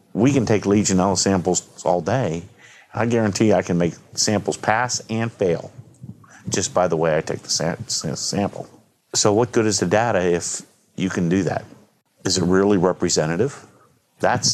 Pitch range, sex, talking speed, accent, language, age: 90-115 Hz, male, 165 wpm, American, English, 50-69